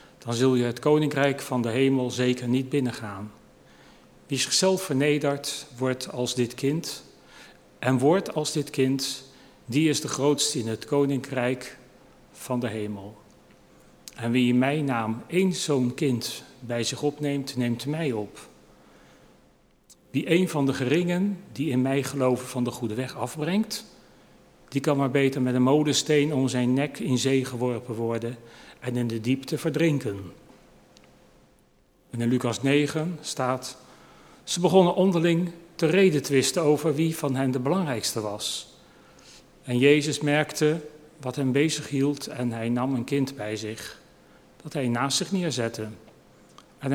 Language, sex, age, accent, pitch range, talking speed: Dutch, male, 40-59, Dutch, 125-145 Hz, 150 wpm